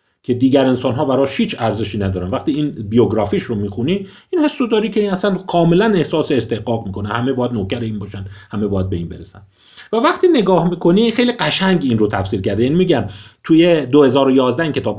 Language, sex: Persian, male